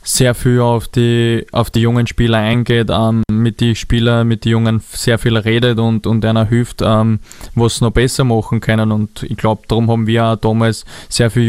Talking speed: 210 wpm